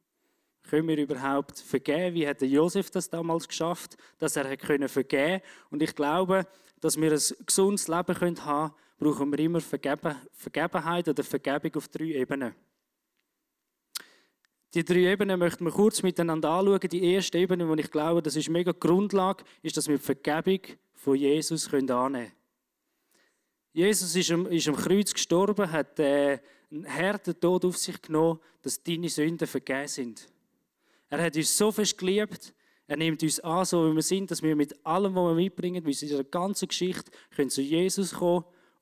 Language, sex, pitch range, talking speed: German, male, 145-185 Hz, 165 wpm